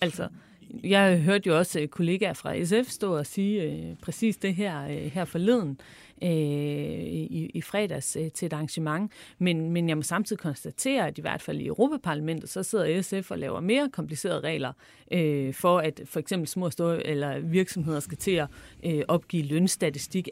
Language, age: Danish, 40-59